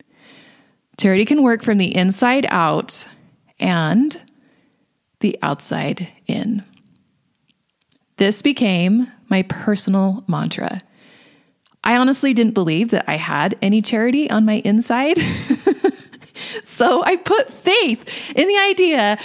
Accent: American